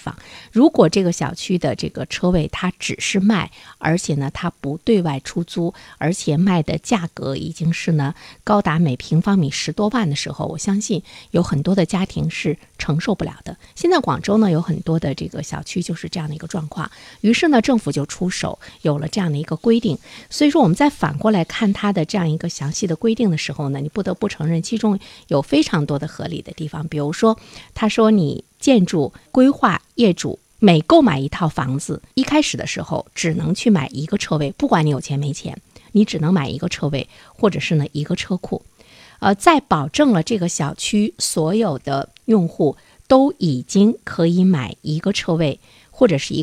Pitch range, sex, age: 155-210 Hz, female, 50-69